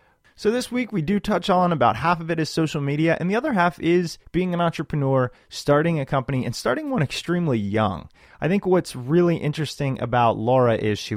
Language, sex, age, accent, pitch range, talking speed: English, male, 30-49, American, 115-165 Hz, 210 wpm